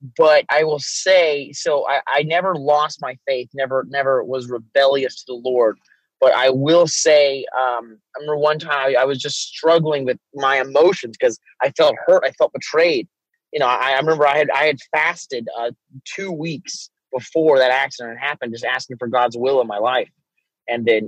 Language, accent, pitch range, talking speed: English, American, 125-150 Hz, 195 wpm